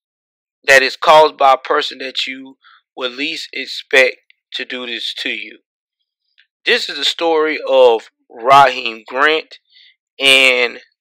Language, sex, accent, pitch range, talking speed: English, male, American, 130-200 Hz, 130 wpm